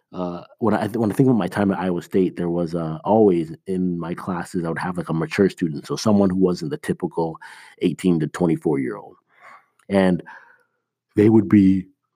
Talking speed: 210 wpm